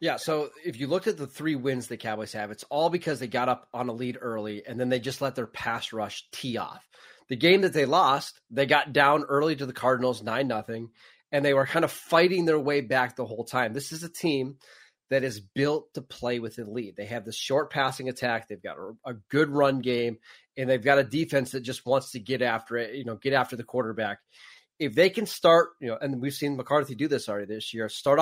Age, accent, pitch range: 30-49, American, 125-155 Hz